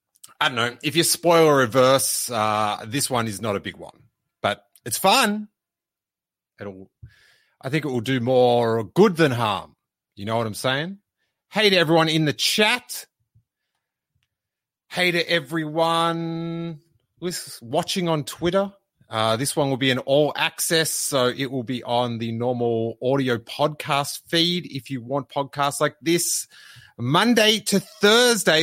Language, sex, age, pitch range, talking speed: English, male, 30-49, 110-165 Hz, 155 wpm